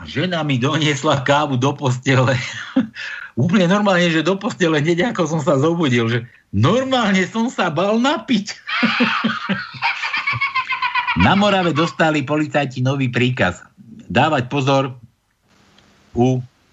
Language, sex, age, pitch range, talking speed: Slovak, male, 60-79, 125-185 Hz, 110 wpm